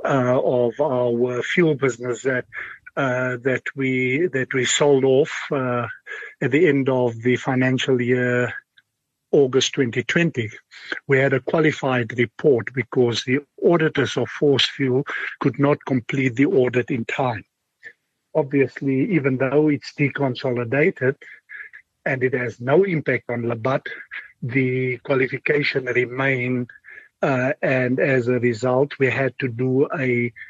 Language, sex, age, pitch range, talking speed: English, male, 50-69, 125-145 Hz, 130 wpm